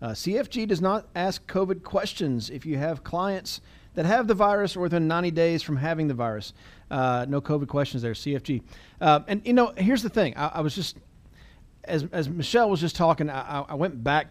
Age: 40-59